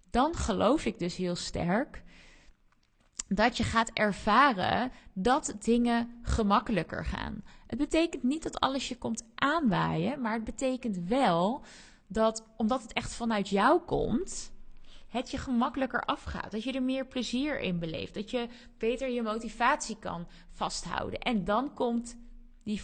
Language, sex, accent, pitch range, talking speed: Dutch, female, Dutch, 205-255 Hz, 145 wpm